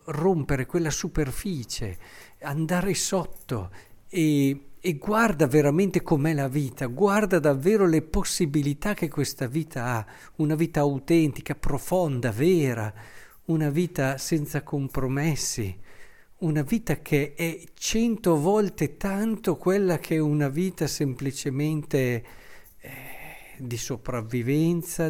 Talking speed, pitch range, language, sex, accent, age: 110 wpm, 125-160 Hz, Italian, male, native, 50-69